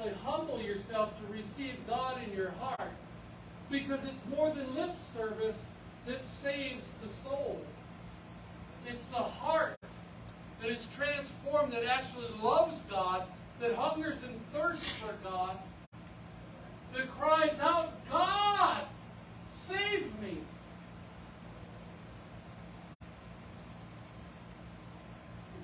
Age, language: 50-69, English